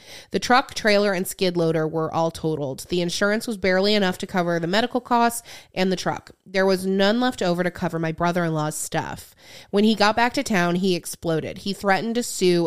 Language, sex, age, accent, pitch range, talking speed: English, female, 20-39, American, 175-220 Hz, 210 wpm